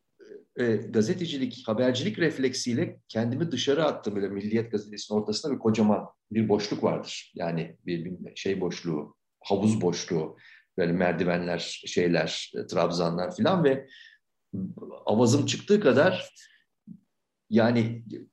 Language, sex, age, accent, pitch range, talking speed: Turkish, male, 50-69, native, 90-130 Hz, 100 wpm